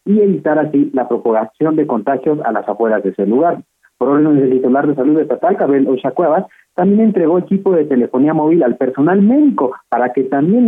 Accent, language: Mexican, Spanish